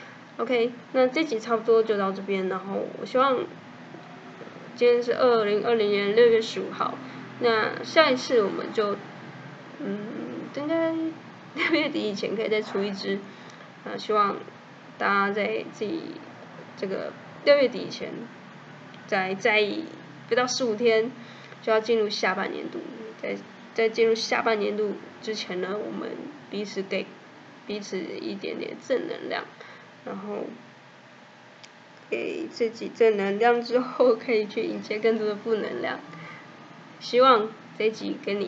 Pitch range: 200-235 Hz